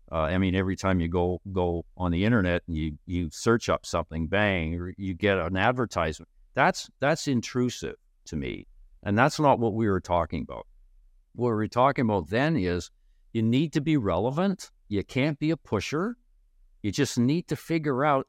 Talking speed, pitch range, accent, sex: 195 wpm, 90-125 Hz, American, male